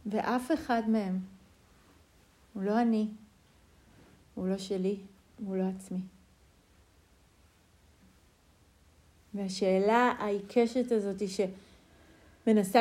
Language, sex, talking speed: Hebrew, female, 80 wpm